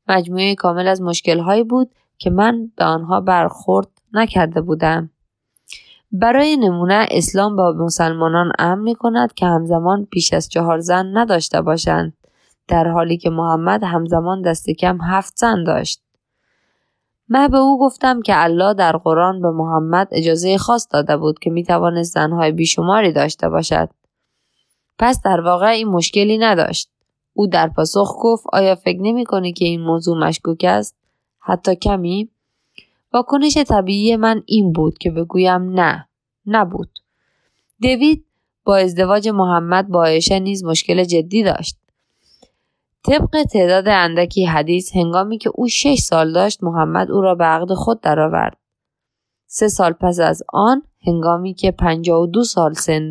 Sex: female